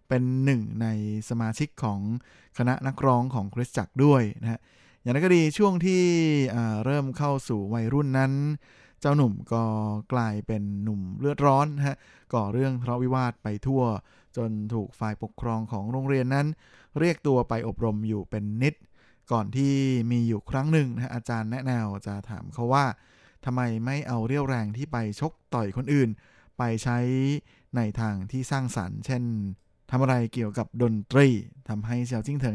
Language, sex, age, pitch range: Thai, male, 20-39, 110-135 Hz